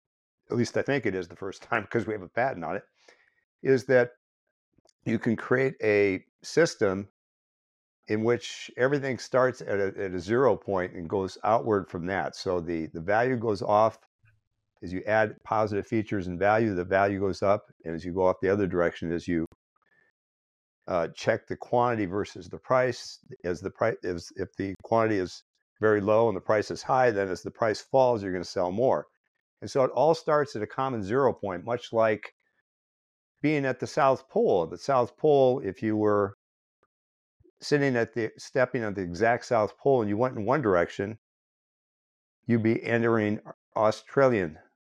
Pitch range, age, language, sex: 95-125 Hz, 50-69, English, male